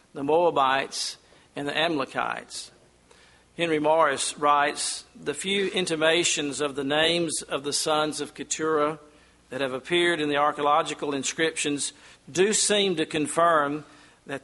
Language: English